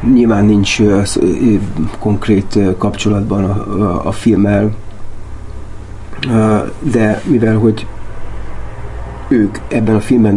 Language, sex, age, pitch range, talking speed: Hungarian, male, 30-49, 100-110 Hz, 80 wpm